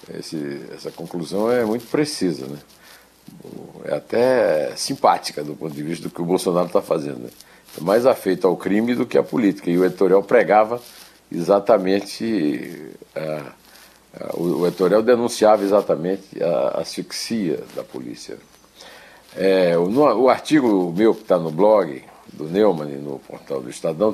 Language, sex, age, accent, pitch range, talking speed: Portuguese, male, 60-79, Brazilian, 85-120 Hz, 155 wpm